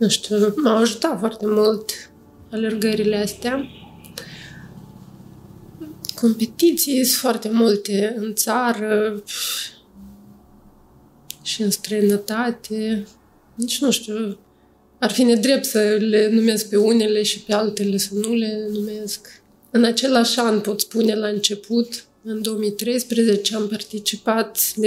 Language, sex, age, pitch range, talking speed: Romanian, female, 20-39, 210-230 Hz, 115 wpm